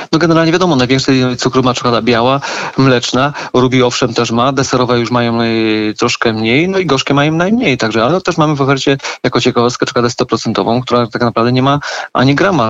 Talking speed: 190 wpm